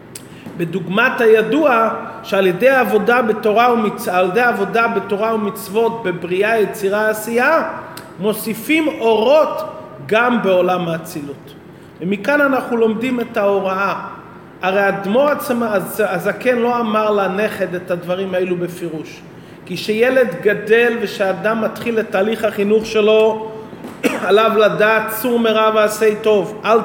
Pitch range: 205-240 Hz